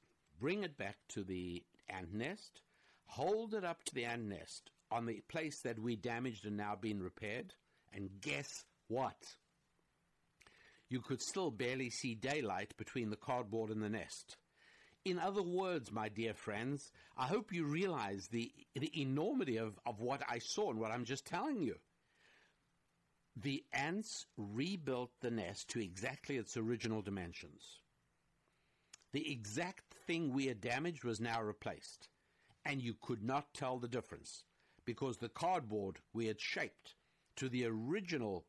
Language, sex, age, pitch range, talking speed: English, male, 60-79, 110-145 Hz, 155 wpm